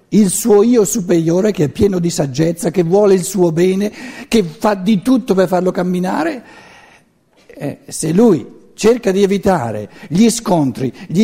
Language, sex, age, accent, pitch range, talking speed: Italian, male, 60-79, native, 145-205 Hz, 160 wpm